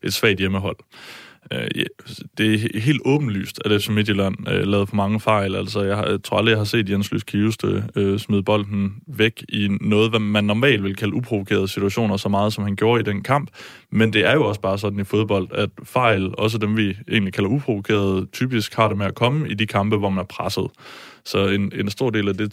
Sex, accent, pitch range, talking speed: male, native, 100-110 Hz, 220 wpm